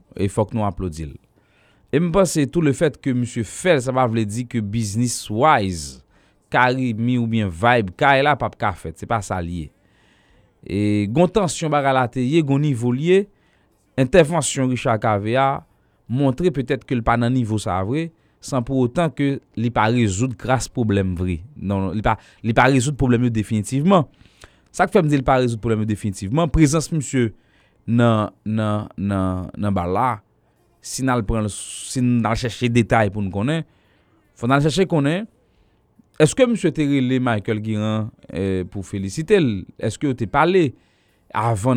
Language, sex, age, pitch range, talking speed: English, male, 30-49, 105-140 Hz, 170 wpm